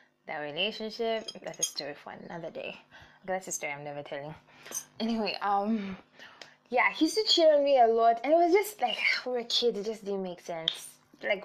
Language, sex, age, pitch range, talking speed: English, female, 20-39, 175-235 Hz, 200 wpm